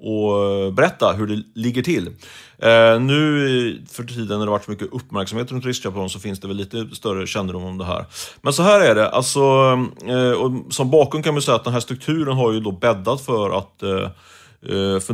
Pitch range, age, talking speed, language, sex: 100-130 Hz, 30-49, 200 wpm, Swedish, male